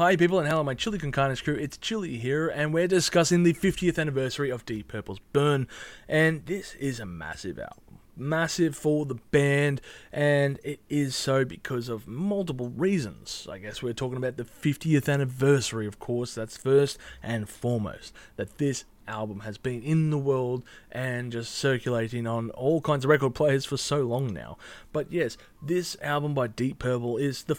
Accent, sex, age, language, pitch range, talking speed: Australian, male, 20-39, English, 120-150 Hz, 180 wpm